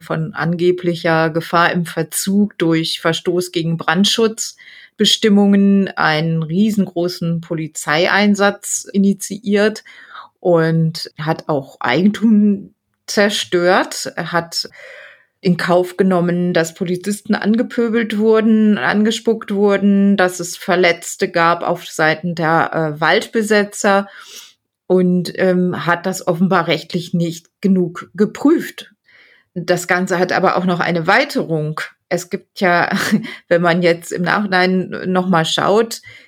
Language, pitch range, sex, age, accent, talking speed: German, 165-200 Hz, female, 30-49, German, 110 wpm